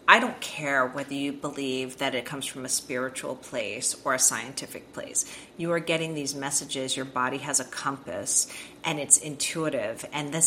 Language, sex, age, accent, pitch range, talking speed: English, female, 40-59, American, 140-190 Hz, 185 wpm